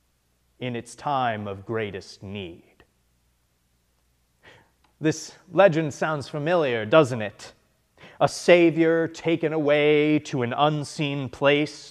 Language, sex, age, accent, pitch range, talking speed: English, male, 30-49, American, 110-155 Hz, 100 wpm